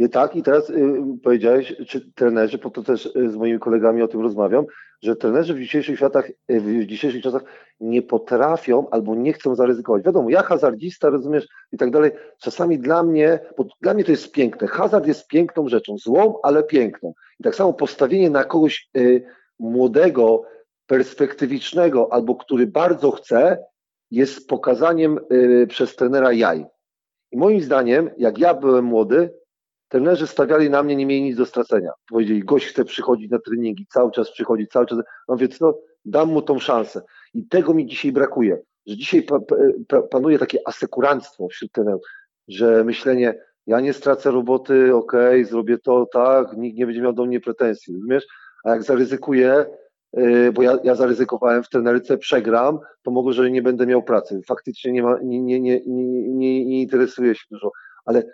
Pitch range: 120-150 Hz